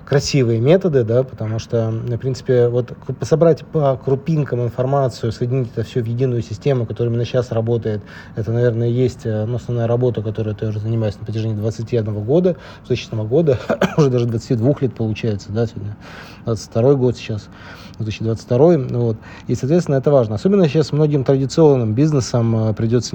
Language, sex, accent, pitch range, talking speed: Russian, male, native, 115-135 Hz, 155 wpm